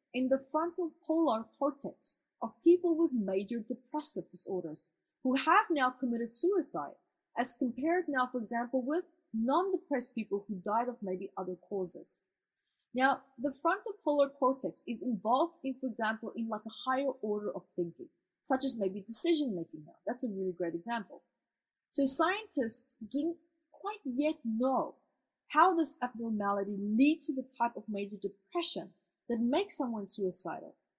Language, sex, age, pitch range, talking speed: English, female, 20-39, 220-310 Hz, 155 wpm